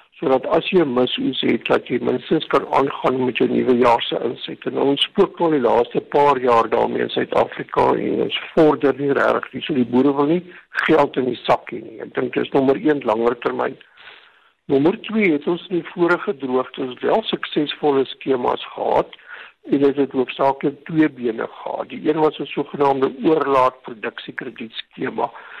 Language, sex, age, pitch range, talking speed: English, male, 60-79, 130-160 Hz, 170 wpm